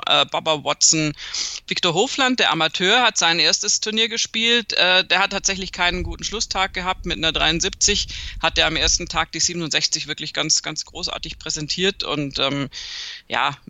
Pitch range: 155-195 Hz